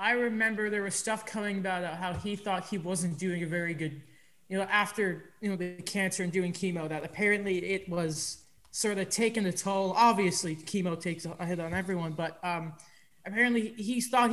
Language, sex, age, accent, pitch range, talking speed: English, male, 20-39, American, 180-235 Hz, 195 wpm